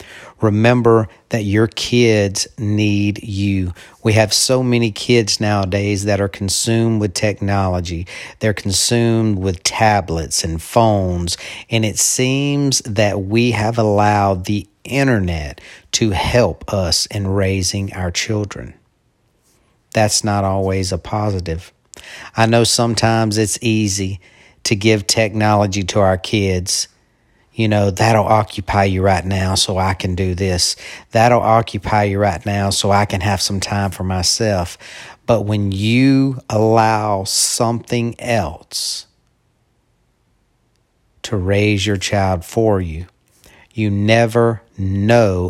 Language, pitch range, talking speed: English, 95-115 Hz, 125 wpm